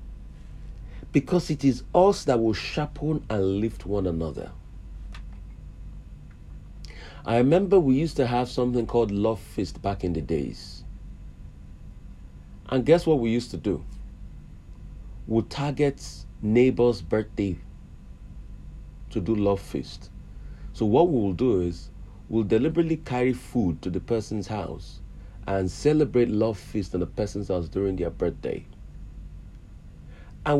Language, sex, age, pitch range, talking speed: English, male, 40-59, 85-120 Hz, 125 wpm